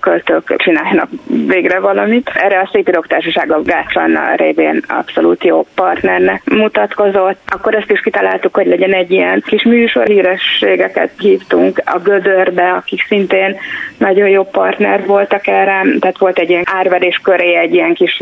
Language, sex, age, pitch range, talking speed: Hungarian, female, 20-39, 170-205 Hz, 145 wpm